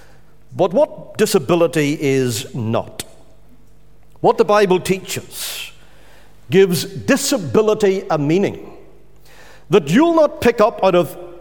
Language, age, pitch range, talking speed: English, 50-69, 165-240 Hz, 105 wpm